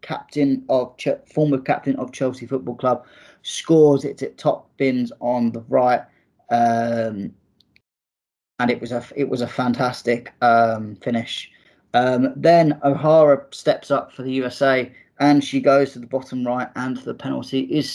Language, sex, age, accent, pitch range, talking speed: English, male, 20-39, British, 125-145 Hz, 155 wpm